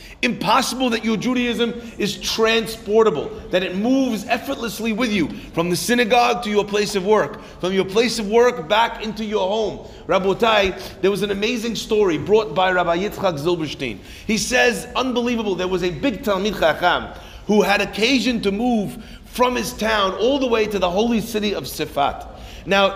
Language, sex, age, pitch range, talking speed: English, male, 40-59, 185-235 Hz, 180 wpm